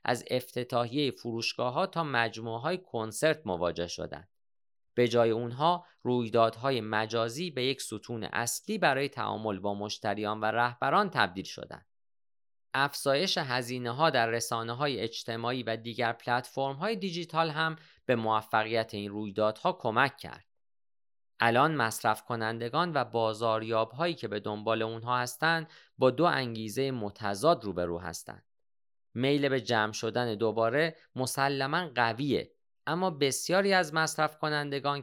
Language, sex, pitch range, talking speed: Persian, male, 110-145 Hz, 125 wpm